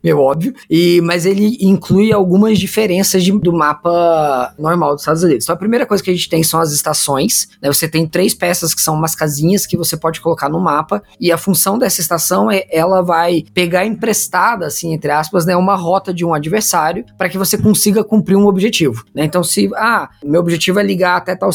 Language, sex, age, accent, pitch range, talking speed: Portuguese, female, 20-39, Brazilian, 165-200 Hz, 215 wpm